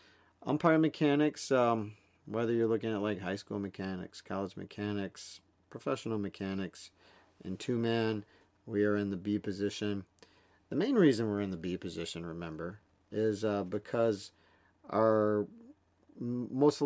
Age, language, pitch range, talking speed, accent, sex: 50-69, English, 95-115 Hz, 130 wpm, American, male